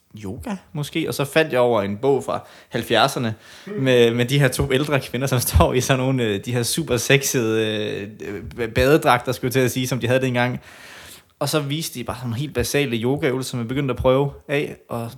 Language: Danish